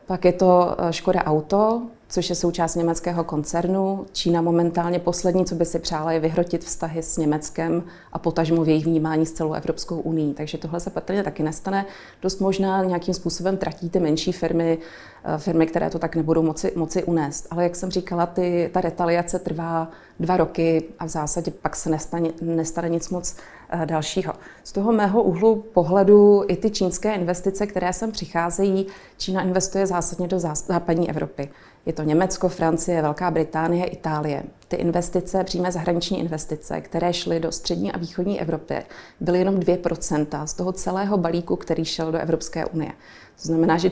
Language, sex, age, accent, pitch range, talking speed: Czech, female, 30-49, native, 165-185 Hz, 170 wpm